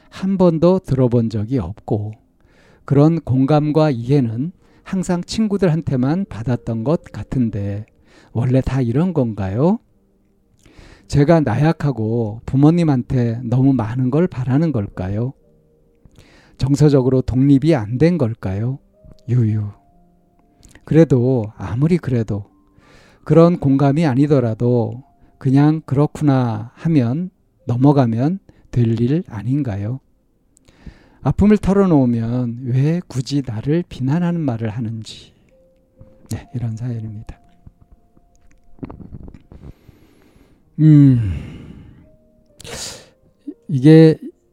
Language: Korean